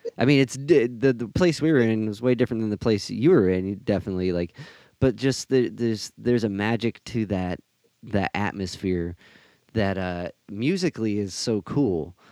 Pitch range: 95-115 Hz